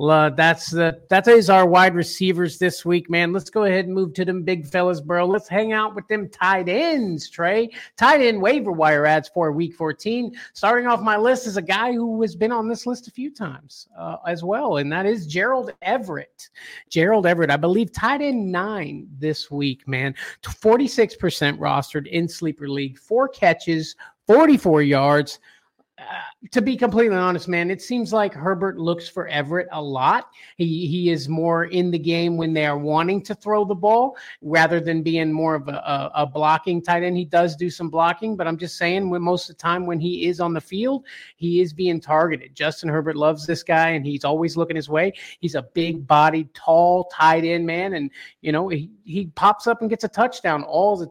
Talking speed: 205 wpm